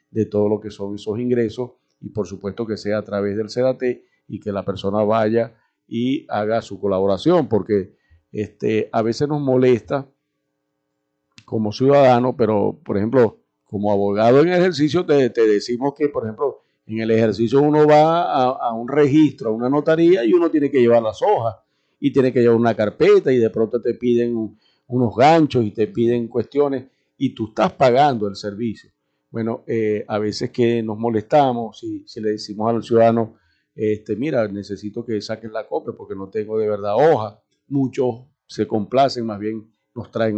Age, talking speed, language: 50-69, 180 wpm, Spanish